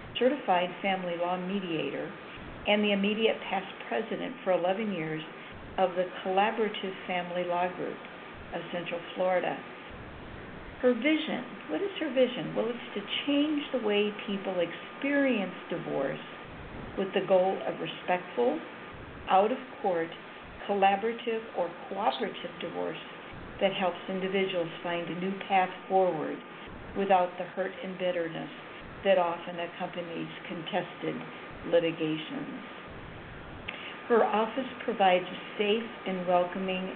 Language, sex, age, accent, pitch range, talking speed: English, female, 50-69, American, 175-210 Hz, 115 wpm